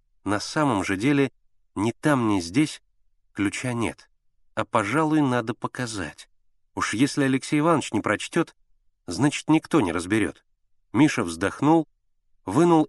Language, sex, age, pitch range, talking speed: Russian, male, 30-49, 110-150 Hz, 125 wpm